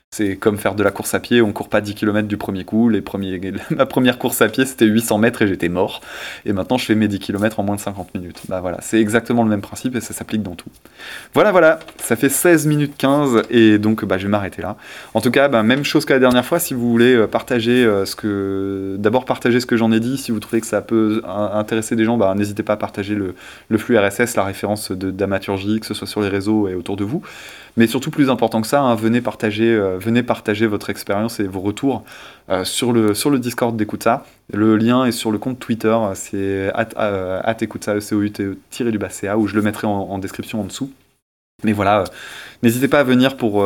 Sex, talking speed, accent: male, 240 wpm, French